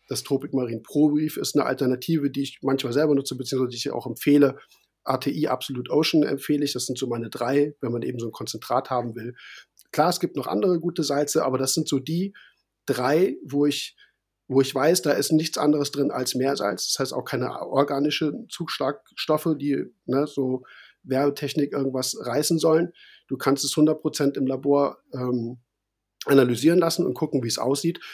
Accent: German